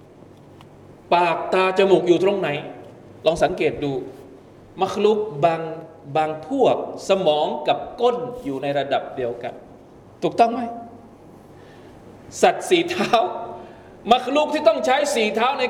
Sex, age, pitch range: male, 20-39, 170-245 Hz